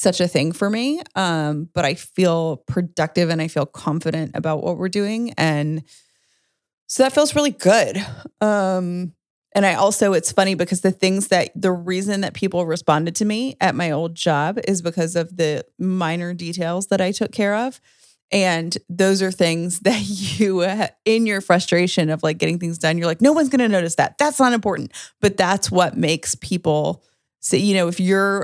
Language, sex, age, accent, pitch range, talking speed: English, female, 30-49, American, 160-195 Hz, 190 wpm